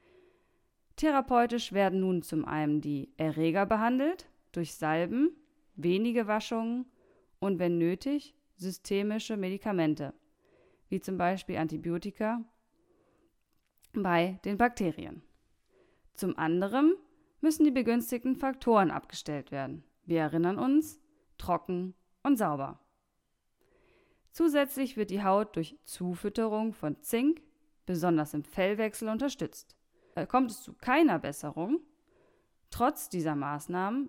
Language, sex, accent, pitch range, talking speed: German, female, German, 175-260 Hz, 100 wpm